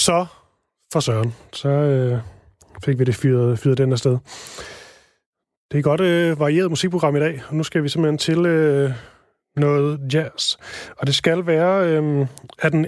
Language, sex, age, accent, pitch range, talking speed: Danish, male, 30-49, native, 140-180 Hz, 175 wpm